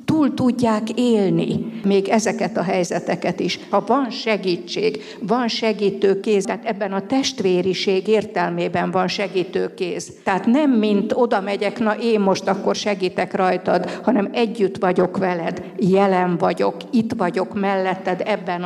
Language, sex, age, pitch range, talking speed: Hungarian, female, 50-69, 185-225 Hz, 135 wpm